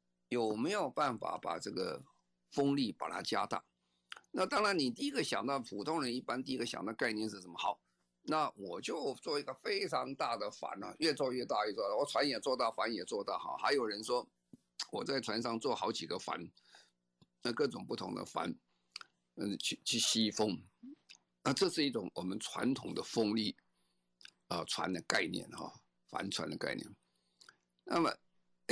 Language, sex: Chinese, male